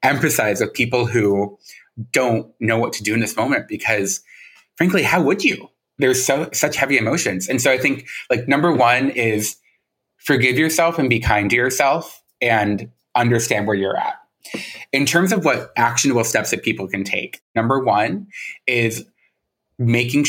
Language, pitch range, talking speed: English, 110-130 Hz, 165 wpm